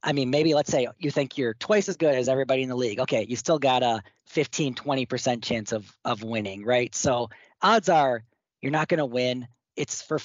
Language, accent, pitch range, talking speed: English, American, 120-145 Hz, 220 wpm